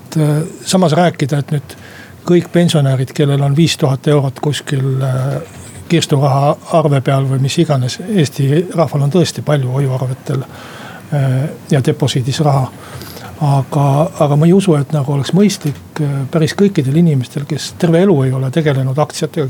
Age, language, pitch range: 60-79, Finnish, 135-160 Hz